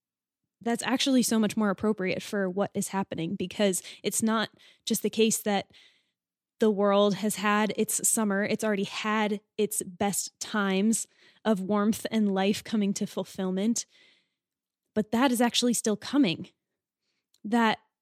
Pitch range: 195-220 Hz